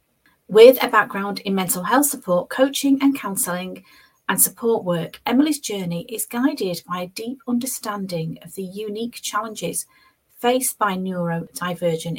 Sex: female